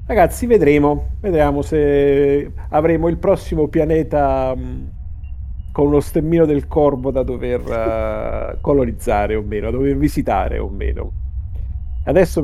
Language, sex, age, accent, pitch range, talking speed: Italian, male, 40-59, native, 105-140 Hz, 125 wpm